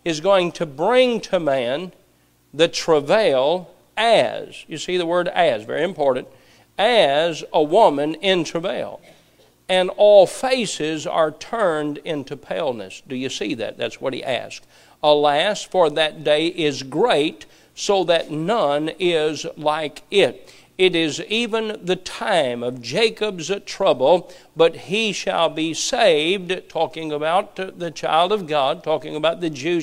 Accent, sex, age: American, male, 50-69